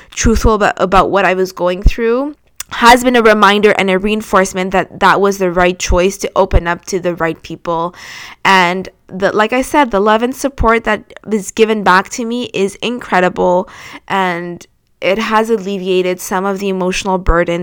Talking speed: 180 wpm